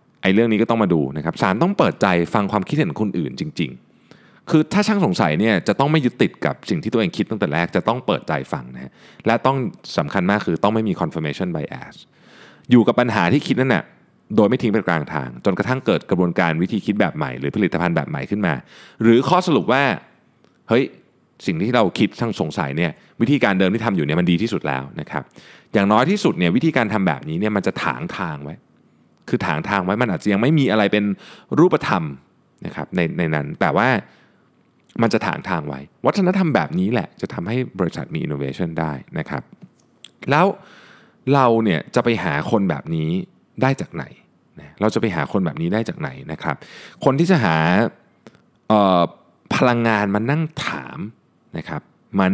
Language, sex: Thai, male